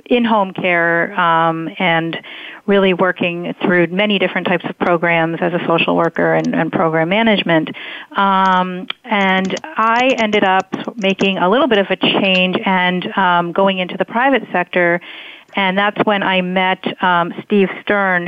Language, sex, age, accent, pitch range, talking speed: English, female, 40-59, American, 170-205 Hz, 155 wpm